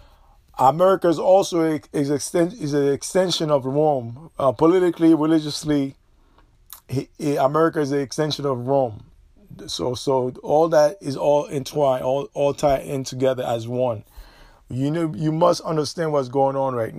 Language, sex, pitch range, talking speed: English, male, 135-165 Hz, 160 wpm